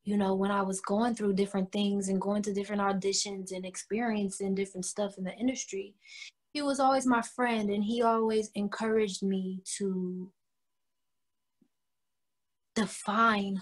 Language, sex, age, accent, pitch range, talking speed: English, female, 20-39, American, 195-245 Hz, 145 wpm